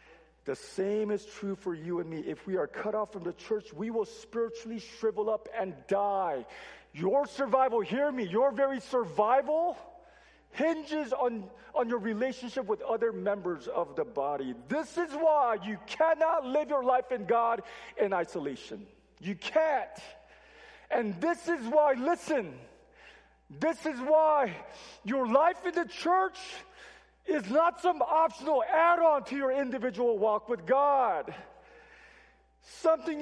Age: 40-59